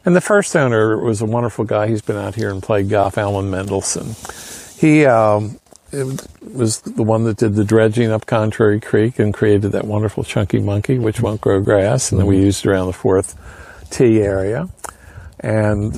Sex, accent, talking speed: male, American, 185 wpm